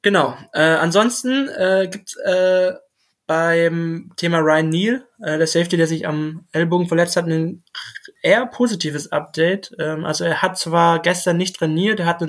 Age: 20-39